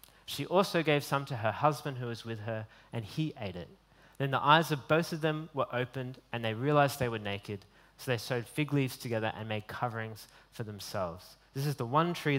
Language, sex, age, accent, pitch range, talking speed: English, male, 20-39, Australian, 115-140 Hz, 225 wpm